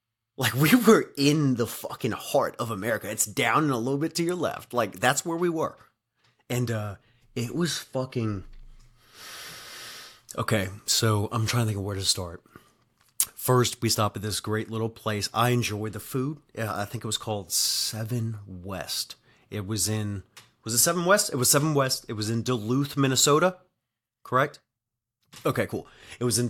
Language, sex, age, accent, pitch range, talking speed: English, male, 30-49, American, 110-135 Hz, 180 wpm